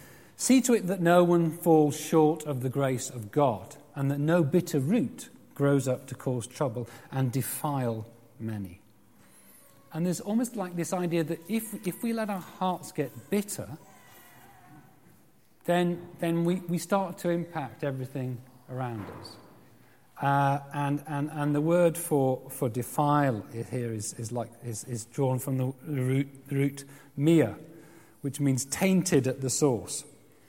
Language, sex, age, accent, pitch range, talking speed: English, male, 40-59, British, 130-175 Hz, 155 wpm